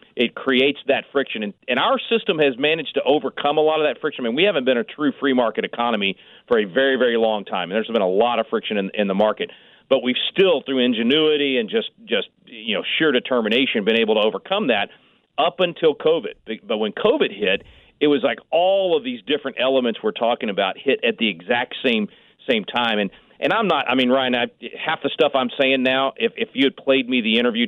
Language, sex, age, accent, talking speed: English, male, 40-59, American, 230 wpm